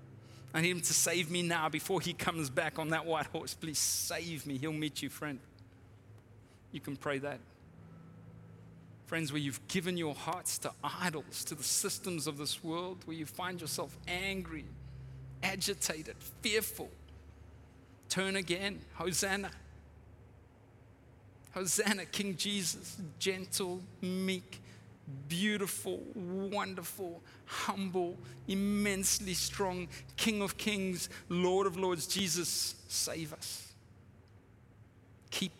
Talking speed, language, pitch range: 120 wpm, English, 115-180 Hz